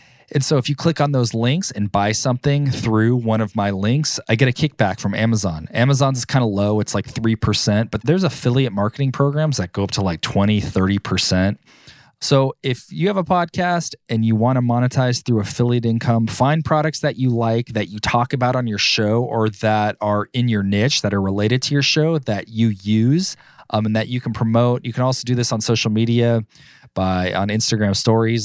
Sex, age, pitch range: male, 20-39, 105-130 Hz